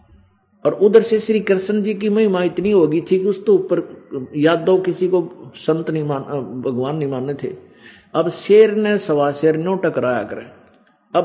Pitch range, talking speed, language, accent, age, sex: 140-185 Hz, 150 wpm, Hindi, native, 50-69, male